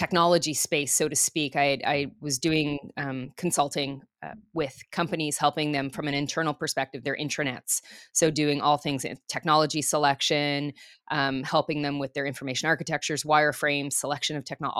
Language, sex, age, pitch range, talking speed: English, female, 20-39, 145-165 Hz, 160 wpm